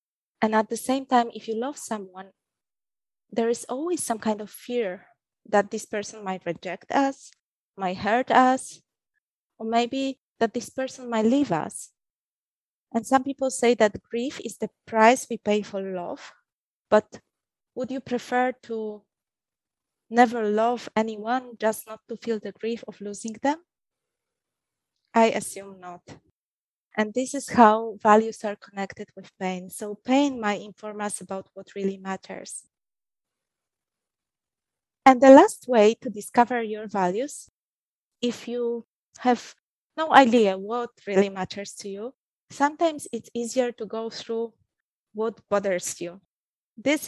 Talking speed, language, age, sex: 145 wpm, English, 20-39, female